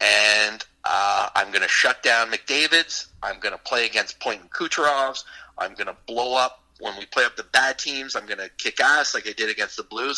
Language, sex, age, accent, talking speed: English, male, 30-49, American, 230 wpm